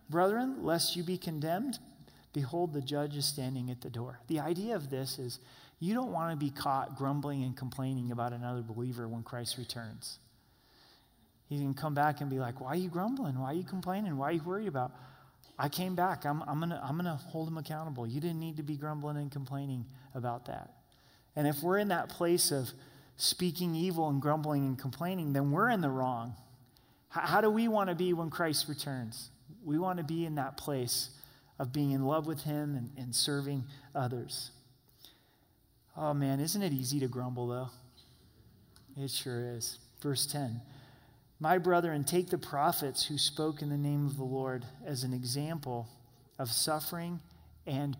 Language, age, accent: English, 30-49, American